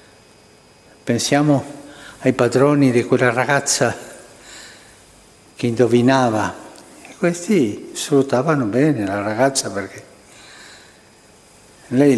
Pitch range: 115-140 Hz